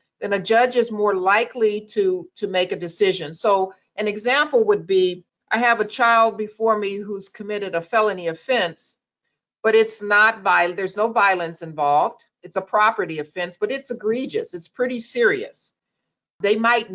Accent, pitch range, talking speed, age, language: American, 190-240 Hz, 165 wpm, 50-69, English